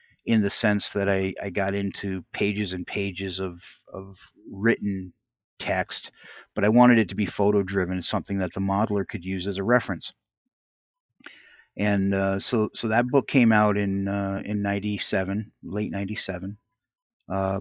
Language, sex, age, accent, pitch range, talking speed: English, male, 30-49, American, 95-115 Hz, 155 wpm